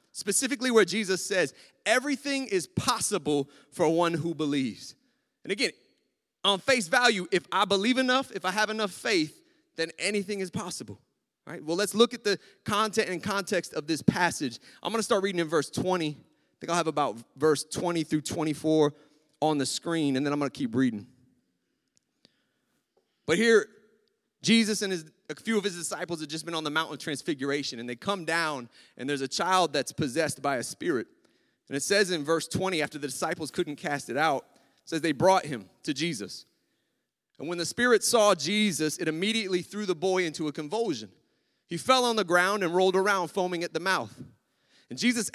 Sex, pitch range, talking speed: male, 155-210 Hz, 195 wpm